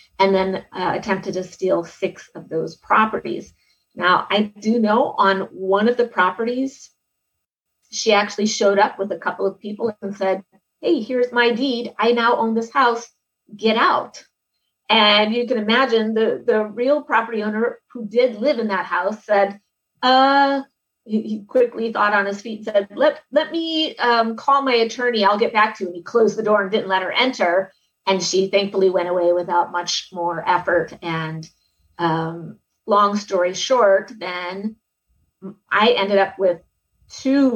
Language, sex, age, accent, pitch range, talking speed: English, female, 30-49, American, 185-225 Hz, 175 wpm